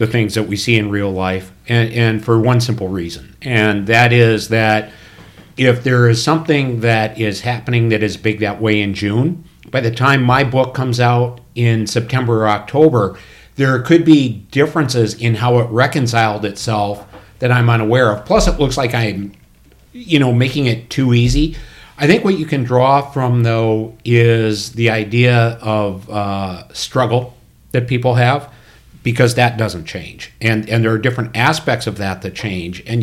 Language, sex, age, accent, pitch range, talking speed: English, male, 50-69, American, 110-125 Hz, 180 wpm